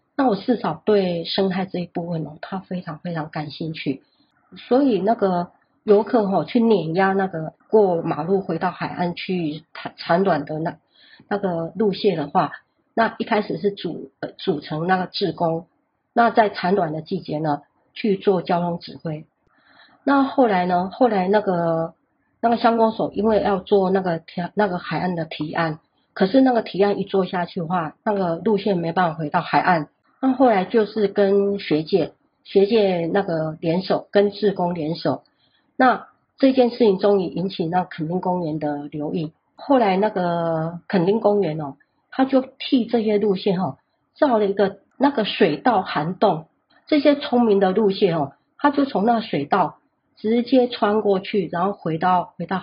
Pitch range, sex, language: 170-215 Hz, female, Chinese